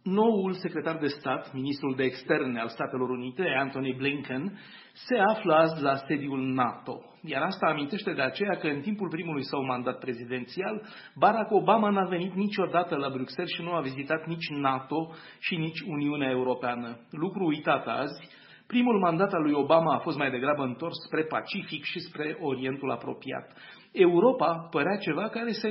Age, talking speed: 40-59, 165 wpm